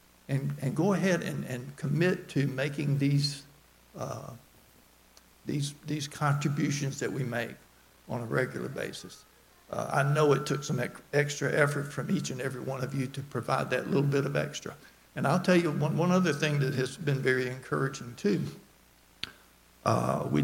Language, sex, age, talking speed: English, male, 60-79, 175 wpm